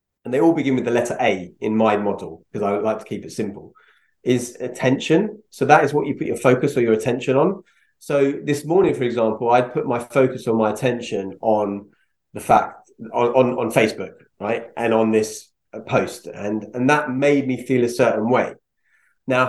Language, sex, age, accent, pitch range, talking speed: English, male, 30-49, British, 110-135 Hz, 205 wpm